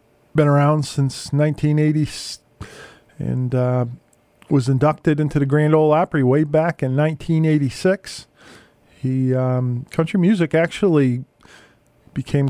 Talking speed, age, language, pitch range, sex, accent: 110 wpm, 40-59, English, 125-150 Hz, male, American